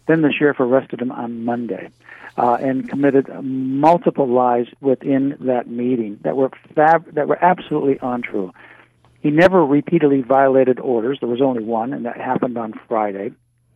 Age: 50-69